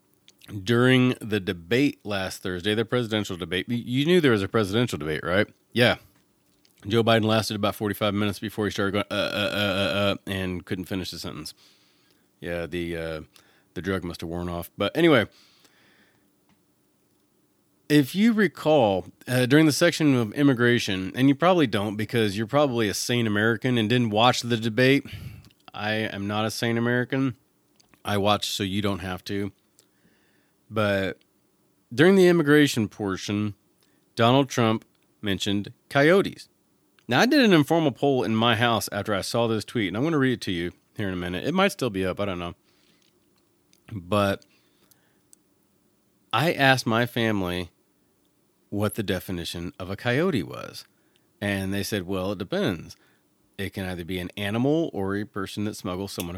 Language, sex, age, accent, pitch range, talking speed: English, male, 30-49, American, 95-120 Hz, 170 wpm